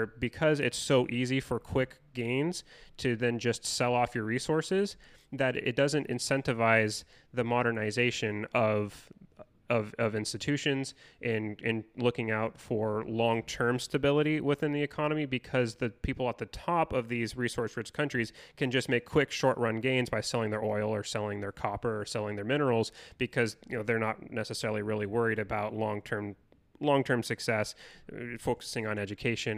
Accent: American